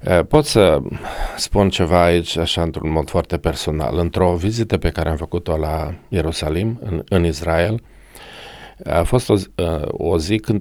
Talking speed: 155 wpm